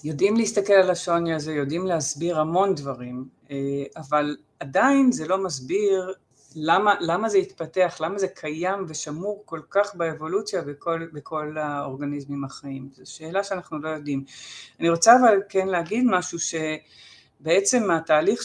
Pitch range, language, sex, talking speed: 155-195 Hz, Hebrew, female, 135 wpm